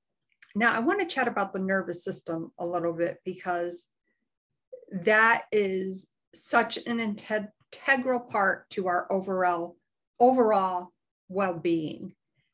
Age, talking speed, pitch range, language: 50-69, 115 wpm, 175-215 Hz, English